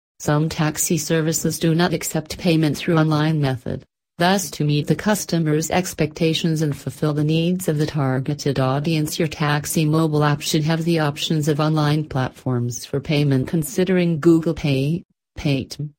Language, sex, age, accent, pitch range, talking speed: English, female, 40-59, American, 145-165 Hz, 155 wpm